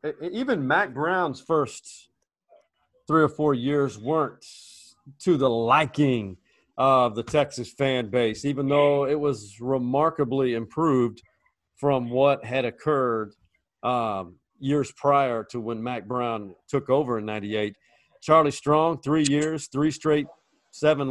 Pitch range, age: 130-155 Hz, 40-59